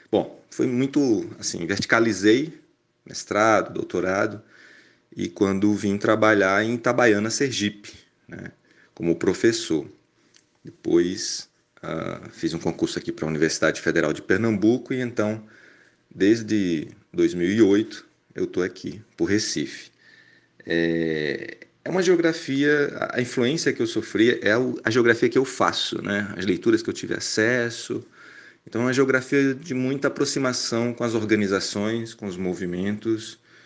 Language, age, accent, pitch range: Portuguese, 40-59, Brazilian, 95-130 Hz